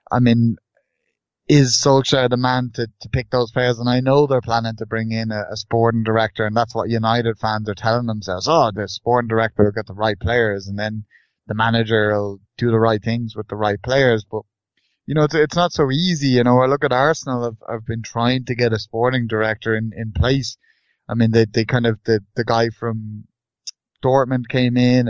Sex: male